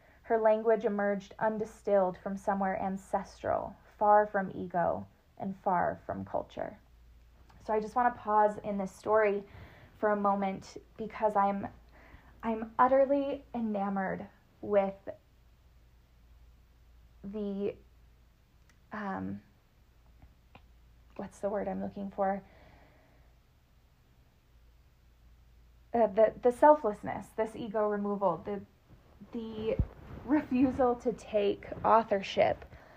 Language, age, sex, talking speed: English, 20-39, female, 95 wpm